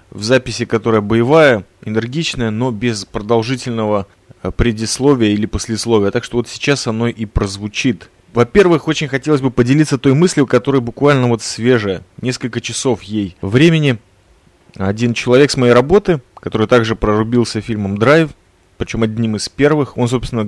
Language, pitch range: Russian, 110-140 Hz